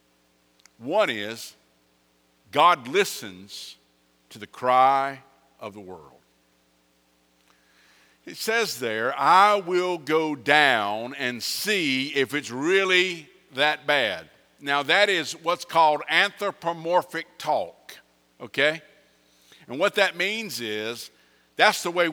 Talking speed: 110 wpm